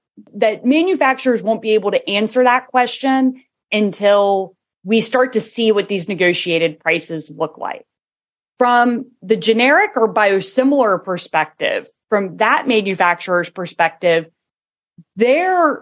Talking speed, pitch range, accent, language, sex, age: 120 wpm, 190-240 Hz, American, English, female, 30-49